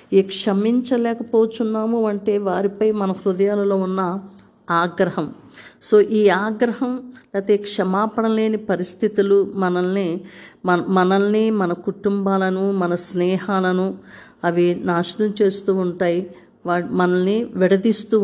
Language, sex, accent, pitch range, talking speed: Telugu, female, native, 190-230 Hz, 90 wpm